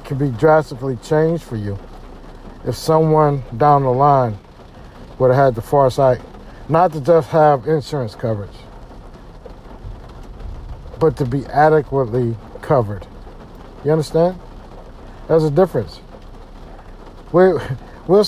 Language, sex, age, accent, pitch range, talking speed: English, male, 50-69, American, 120-165 Hz, 110 wpm